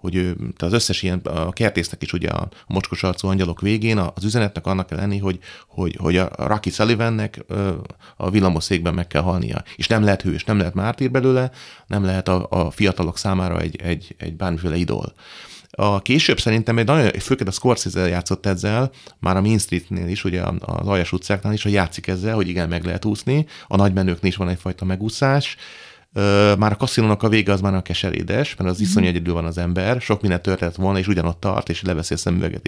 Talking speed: 205 wpm